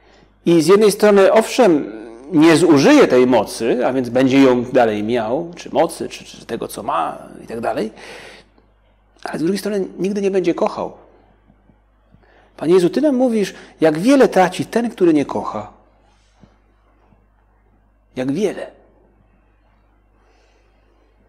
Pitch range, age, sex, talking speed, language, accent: 115-190 Hz, 40-59, male, 130 wpm, Polish, native